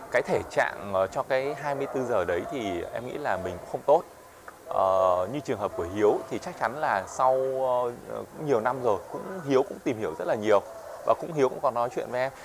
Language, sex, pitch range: Vietnamese, male, 90-130 Hz